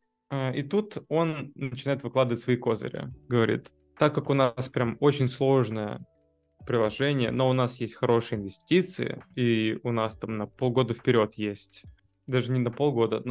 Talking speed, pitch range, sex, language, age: 155 wpm, 115-140 Hz, male, Russian, 20-39